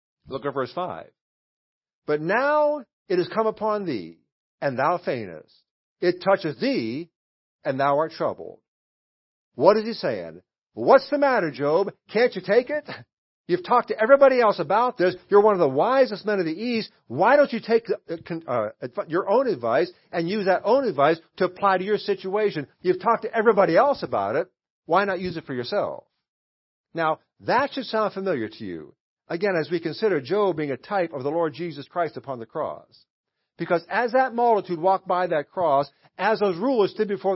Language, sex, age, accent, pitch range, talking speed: English, male, 50-69, American, 165-220 Hz, 185 wpm